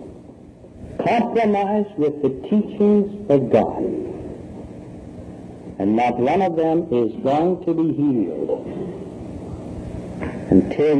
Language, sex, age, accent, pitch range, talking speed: English, male, 60-79, American, 145-215 Hz, 95 wpm